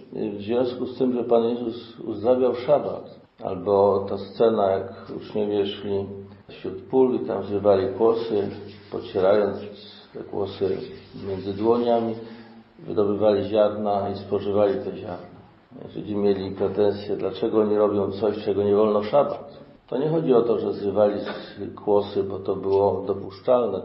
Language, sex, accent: Polish, male, native